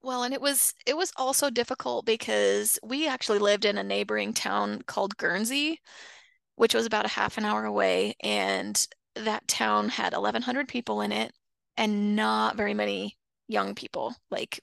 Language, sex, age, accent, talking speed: English, female, 20-39, American, 170 wpm